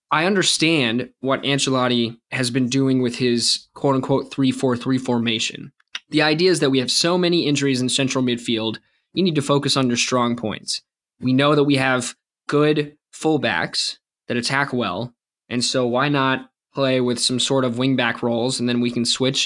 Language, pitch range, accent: English, 125-145 Hz, American